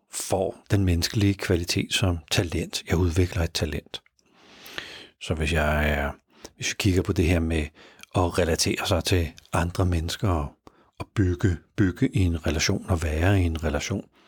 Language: Danish